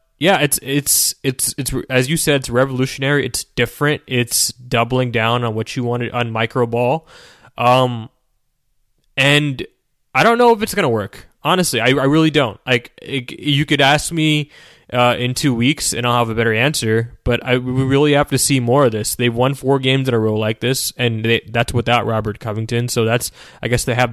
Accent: American